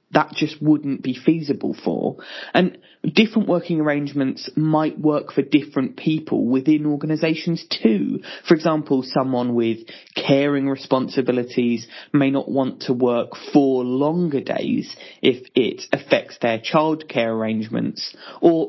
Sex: male